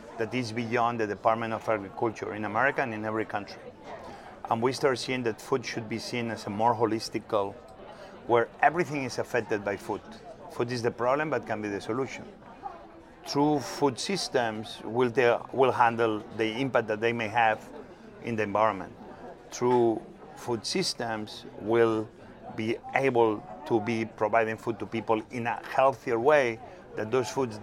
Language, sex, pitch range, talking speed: English, male, 115-130 Hz, 165 wpm